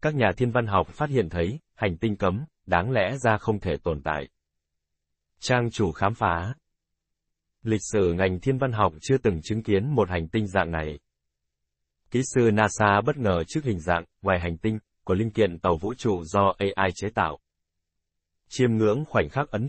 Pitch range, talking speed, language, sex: 85-115 Hz, 190 wpm, Vietnamese, male